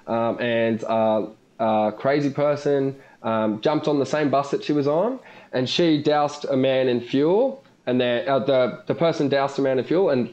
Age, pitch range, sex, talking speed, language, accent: 20-39, 115-140 Hz, male, 205 wpm, English, Australian